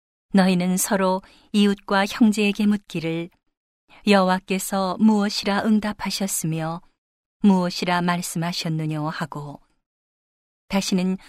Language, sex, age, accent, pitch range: Korean, female, 40-59, native, 175-200 Hz